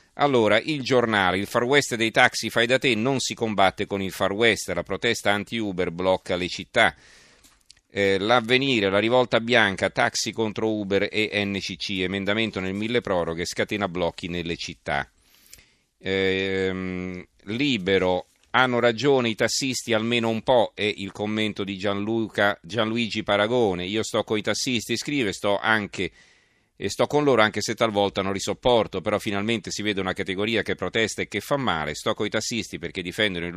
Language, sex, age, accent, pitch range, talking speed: Italian, male, 40-59, native, 95-115 Hz, 170 wpm